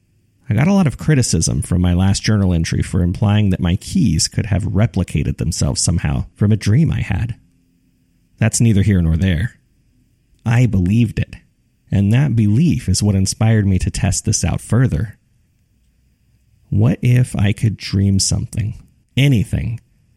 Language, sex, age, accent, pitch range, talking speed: English, male, 30-49, American, 95-120 Hz, 160 wpm